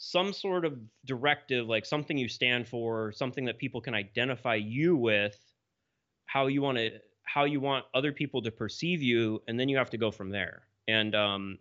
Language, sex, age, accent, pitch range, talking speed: English, male, 20-39, American, 105-125 Hz, 195 wpm